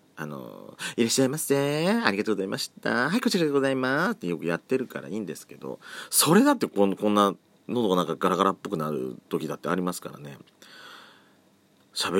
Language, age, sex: Japanese, 40-59, male